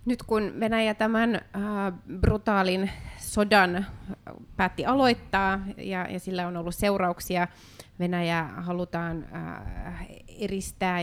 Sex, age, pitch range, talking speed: female, 30-49, 155-195 Hz, 95 wpm